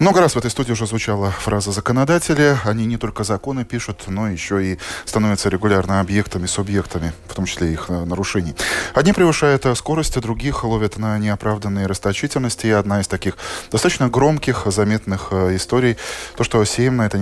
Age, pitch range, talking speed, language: 20-39, 90-120 Hz, 170 wpm, Russian